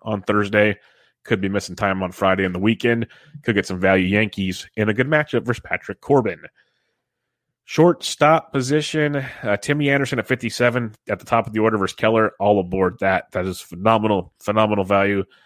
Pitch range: 100-115 Hz